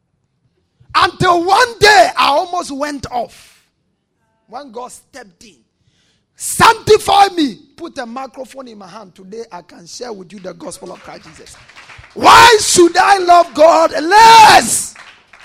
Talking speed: 140 wpm